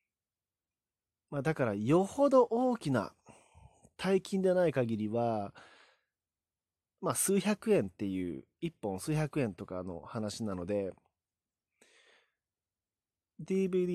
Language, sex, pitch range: Japanese, male, 100-170 Hz